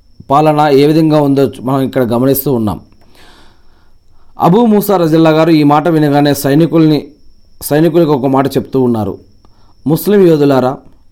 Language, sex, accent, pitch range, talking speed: Telugu, male, native, 125-170 Hz, 125 wpm